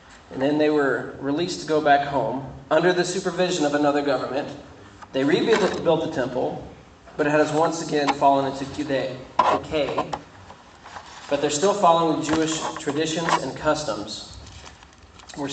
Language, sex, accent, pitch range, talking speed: English, male, American, 125-155 Hz, 140 wpm